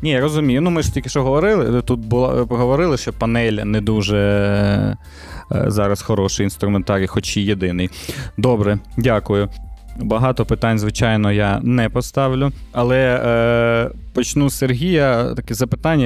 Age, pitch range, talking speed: 20-39, 110-135 Hz, 125 wpm